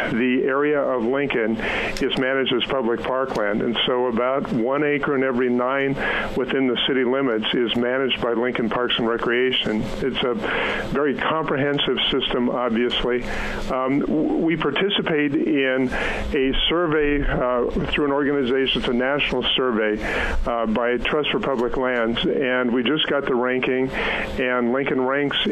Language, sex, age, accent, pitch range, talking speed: English, male, 50-69, American, 120-140 Hz, 150 wpm